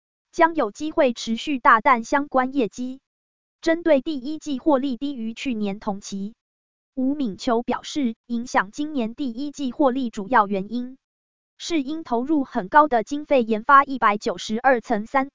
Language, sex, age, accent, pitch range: Chinese, female, 20-39, American, 230-290 Hz